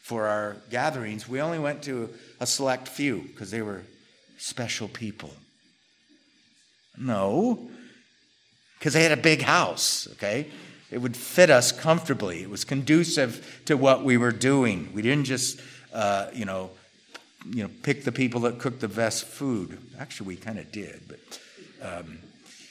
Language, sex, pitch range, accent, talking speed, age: English, male, 125-170 Hz, American, 155 wpm, 50-69